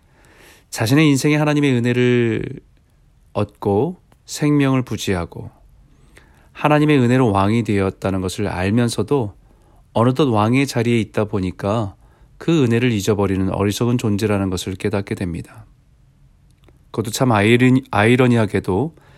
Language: Korean